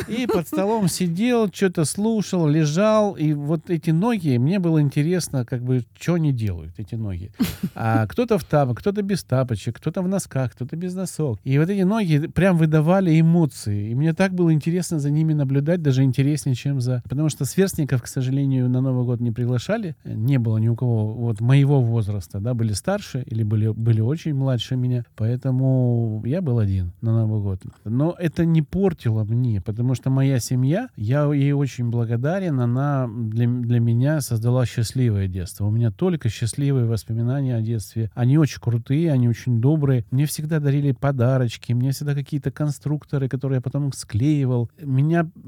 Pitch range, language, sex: 115-155 Hz, Russian, male